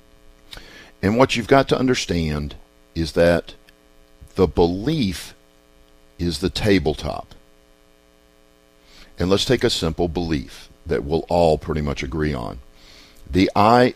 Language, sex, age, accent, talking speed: English, male, 50-69, American, 120 wpm